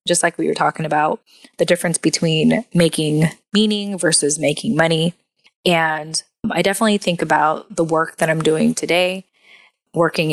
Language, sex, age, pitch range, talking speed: English, female, 20-39, 155-180 Hz, 150 wpm